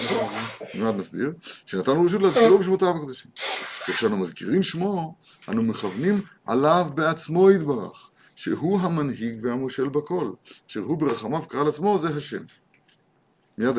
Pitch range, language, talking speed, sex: 120-175 Hz, Hebrew, 120 wpm, male